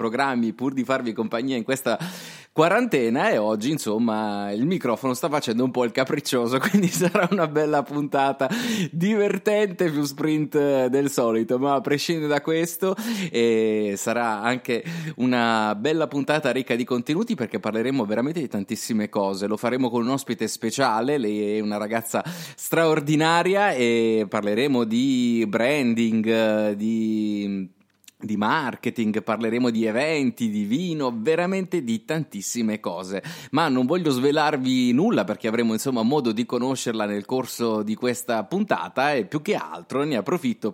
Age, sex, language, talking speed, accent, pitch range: 30-49, male, Italian, 145 wpm, native, 115-160 Hz